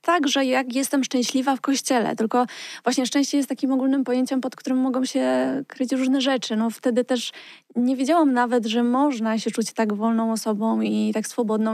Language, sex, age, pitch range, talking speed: Polish, female, 20-39, 225-265 Hz, 190 wpm